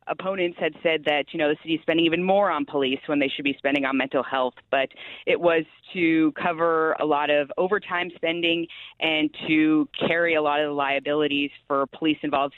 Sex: female